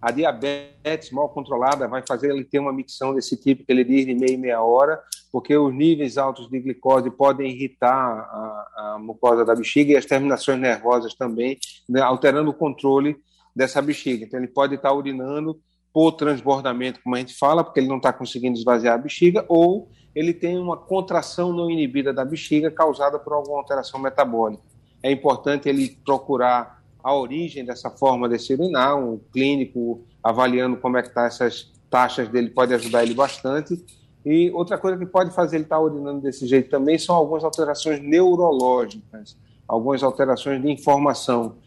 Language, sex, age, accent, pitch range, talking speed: Portuguese, male, 30-49, Brazilian, 125-150 Hz, 175 wpm